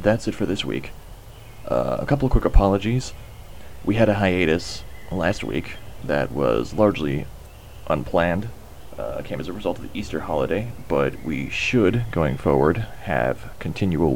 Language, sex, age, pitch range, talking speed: English, male, 30-49, 75-110 Hz, 155 wpm